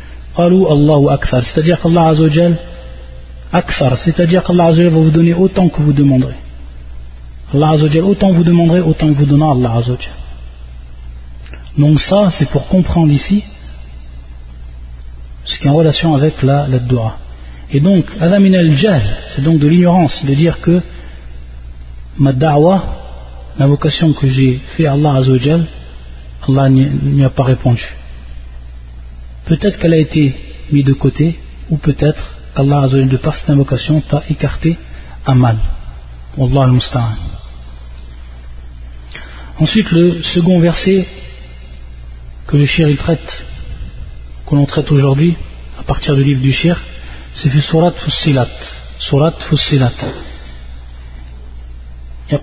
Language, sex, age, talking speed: French, male, 40-59, 135 wpm